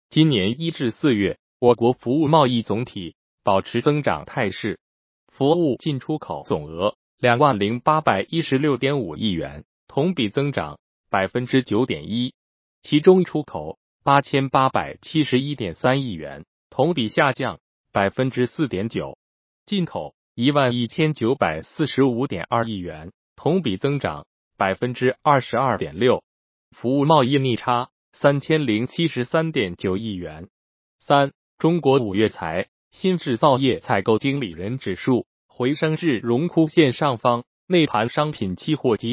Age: 20-39